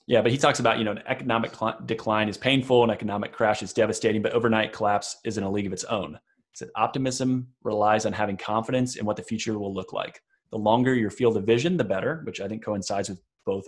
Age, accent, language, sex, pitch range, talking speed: 30-49, American, English, male, 100-115 Hz, 240 wpm